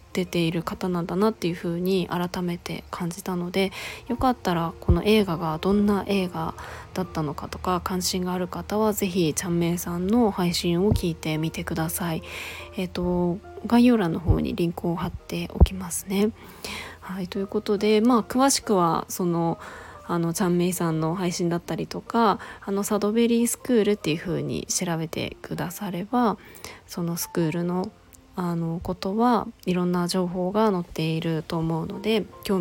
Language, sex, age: Japanese, female, 20-39